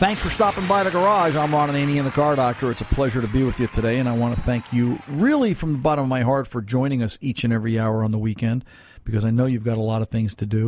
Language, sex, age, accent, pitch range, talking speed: English, male, 50-69, American, 115-140 Hz, 305 wpm